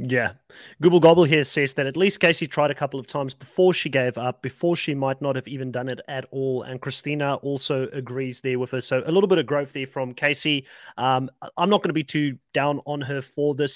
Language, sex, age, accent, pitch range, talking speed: English, male, 30-49, Australian, 130-155 Hz, 245 wpm